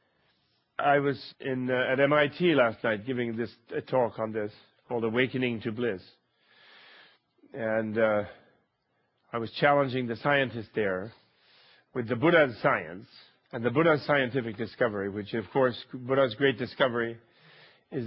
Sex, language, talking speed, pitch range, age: male, English, 140 wpm, 120-145 Hz, 40-59